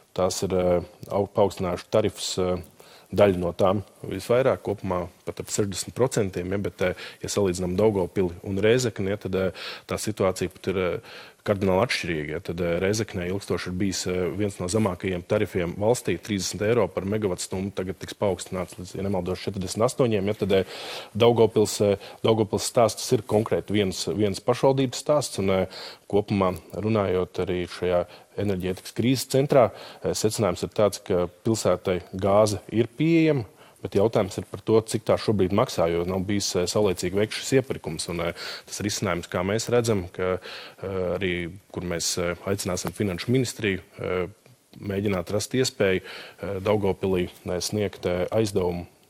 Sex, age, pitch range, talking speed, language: male, 20-39, 90-105 Hz, 135 wpm, English